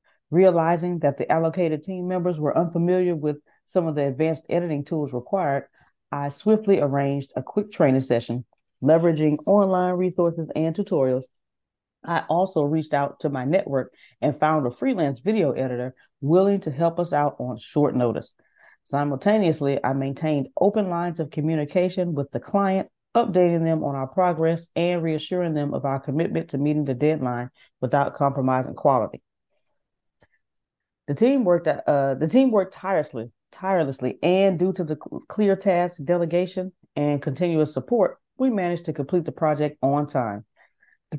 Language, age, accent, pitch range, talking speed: English, 30-49, American, 145-180 Hz, 155 wpm